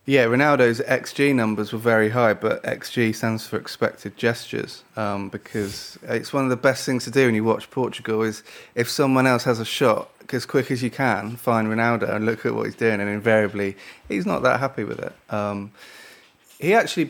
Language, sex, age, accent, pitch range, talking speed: English, male, 30-49, British, 105-120 Hz, 205 wpm